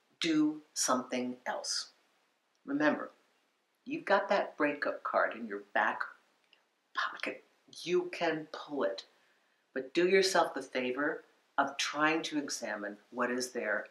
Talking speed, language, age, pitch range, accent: 125 wpm, English, 50-69, 130-175 Hz, American